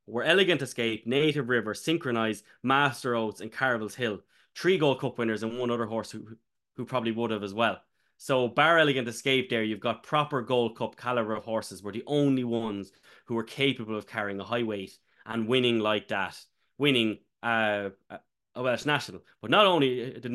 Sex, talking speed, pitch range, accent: male, 190 wpm, 110-135 Hz, Irish